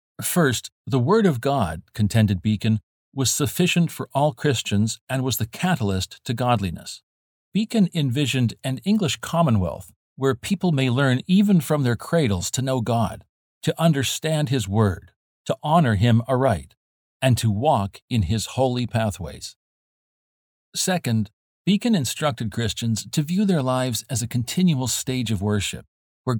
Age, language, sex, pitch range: 50-69, English, male, 105-150 Hz